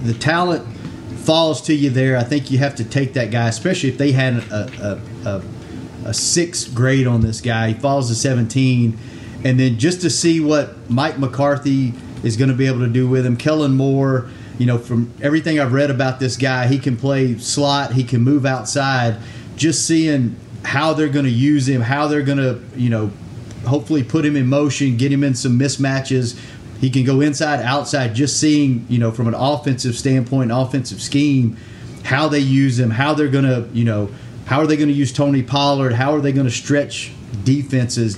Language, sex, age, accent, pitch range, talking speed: English, male, 30-49, American, 120-140 Hz, 205 wpm